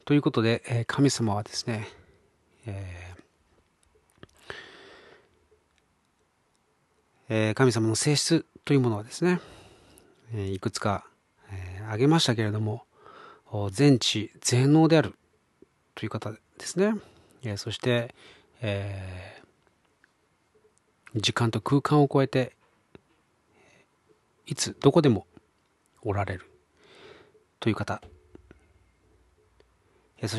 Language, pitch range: Japanese, 100-140 Hz